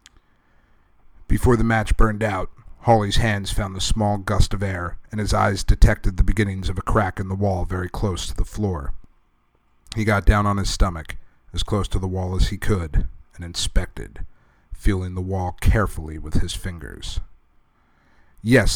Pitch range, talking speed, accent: 85-105 Hz, 175 wpm, American